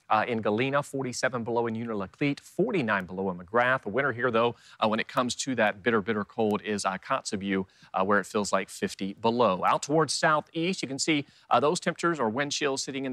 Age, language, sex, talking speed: 40-59, English, male, 220 wpm